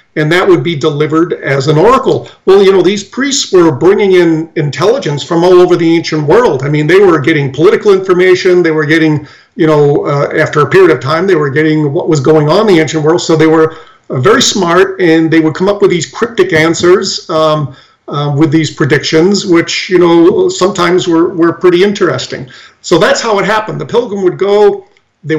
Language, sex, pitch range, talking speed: English, male, 155-185 Hz, 215 wpm